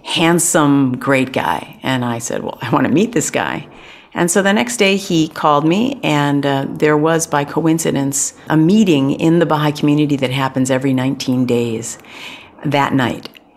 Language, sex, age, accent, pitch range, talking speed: English, female, 50-69, American, 130-155 Hz, 175 wpm